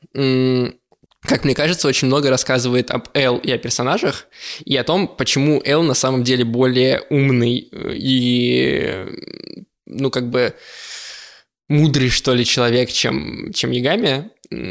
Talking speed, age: 130 wpm, 20-39